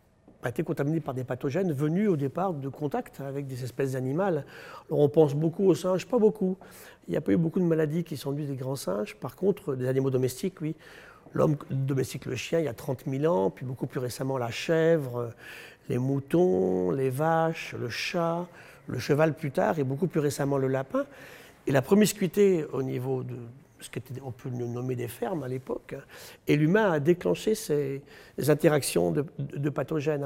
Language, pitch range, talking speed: French, 135-170 Hz, 195 wpm